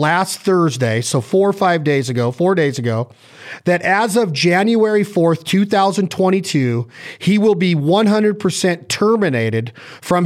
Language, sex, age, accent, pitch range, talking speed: English, male, 40-59, American, 150-190 Hz, 135 wpm